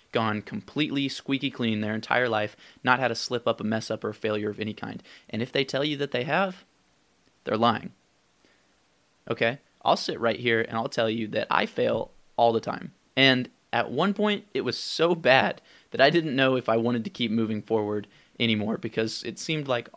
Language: English